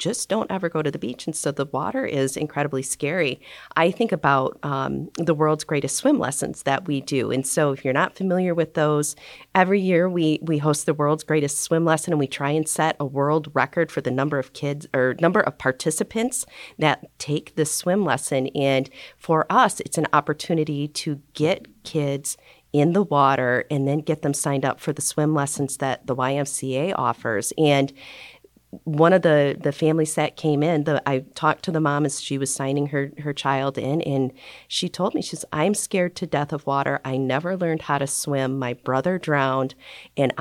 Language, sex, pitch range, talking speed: English, female, 130-155 Hz, 205 wpm